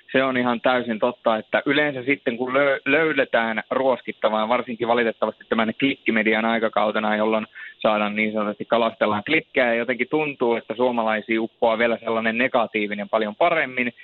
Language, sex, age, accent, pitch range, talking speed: Finnish, male, 30-49, native, 110-125 Hz, 140 wpm